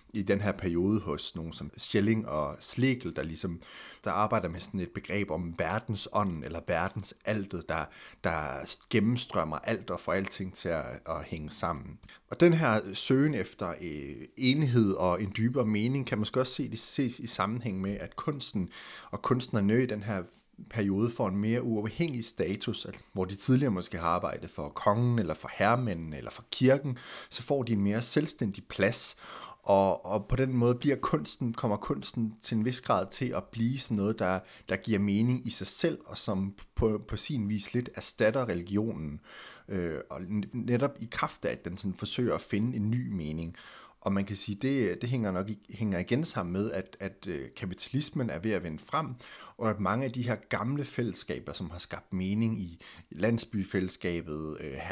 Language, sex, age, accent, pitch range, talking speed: Danish, male, 30-49, native, 95-120 Hz, 190 wpm